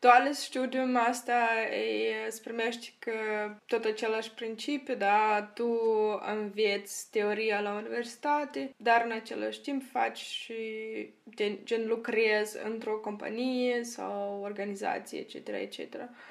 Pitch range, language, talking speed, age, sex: 205-245 Hz, Romanian, 105 wpm, 20-39, female